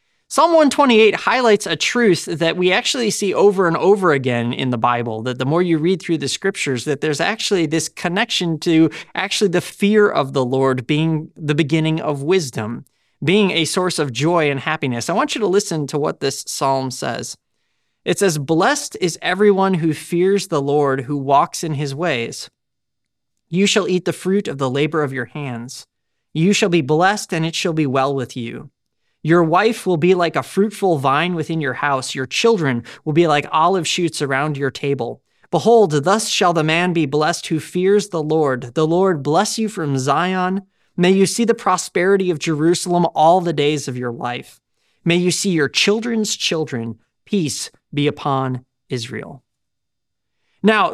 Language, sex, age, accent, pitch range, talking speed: English, male, 20-39, American, 135-185 Hz, 185 wpm